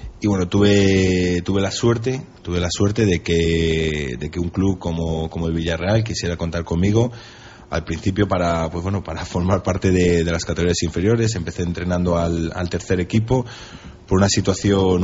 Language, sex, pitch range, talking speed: Spanish, male, 85-95 Hz, 175 wpm